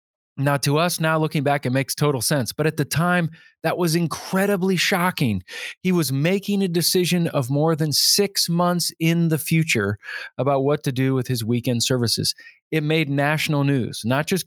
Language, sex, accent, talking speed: English, male, American, 185 wpm